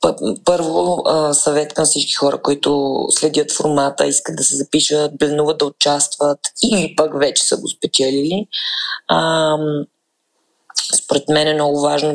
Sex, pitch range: female, 140-155 Hz